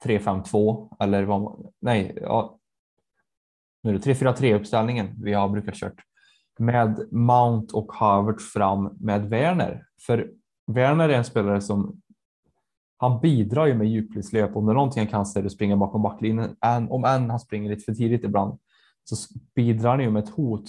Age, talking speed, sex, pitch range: 10-29, 165 wpm, male, 100-120 Hz